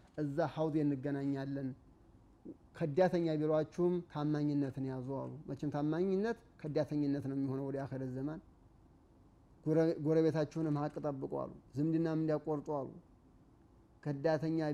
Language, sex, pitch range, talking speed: Amharic, male, 135-170 Hz, 95 wpm